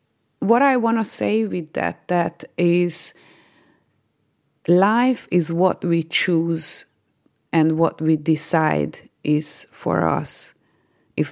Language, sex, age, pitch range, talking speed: English, female, 30-49, 160-205 Hz, 115 wpm